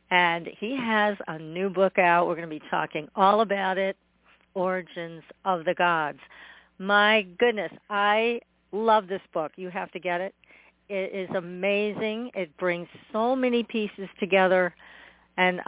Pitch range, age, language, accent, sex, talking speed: 175-210 Hz, 50-69, English, American, female, 155 wpm